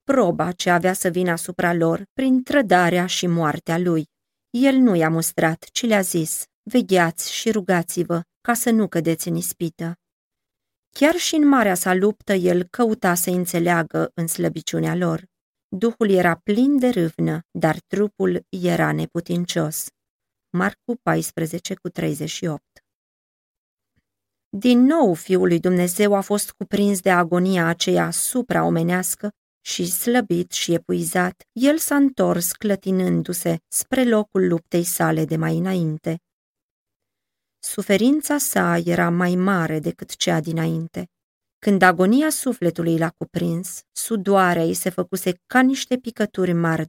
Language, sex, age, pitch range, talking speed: Romanian, female, 30-49, 165-200 Hz, 130 wpm